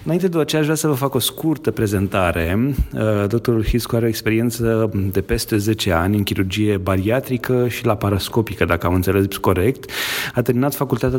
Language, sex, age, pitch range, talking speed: Romanian, male, 30-49, 100-125 Hz, 170 wpm